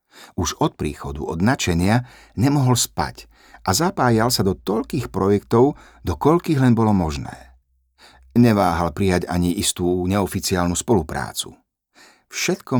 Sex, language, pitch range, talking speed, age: male, Slovak, 90-125 Hz, 115 wpm, 50-69